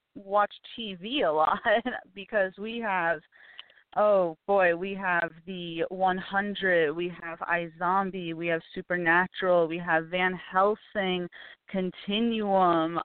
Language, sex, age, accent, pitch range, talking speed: English, female, 30-49, American, 170-195 Hz, 110 wpm